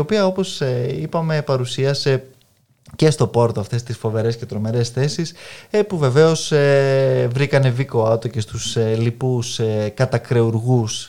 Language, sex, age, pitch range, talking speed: Greek, male, 20-39, 115-140 Hz, 125 wpm